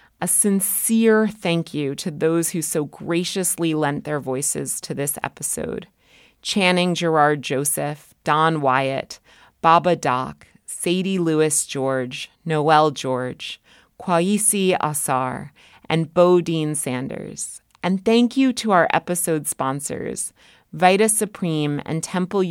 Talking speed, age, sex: 110 wpm, 30-49, female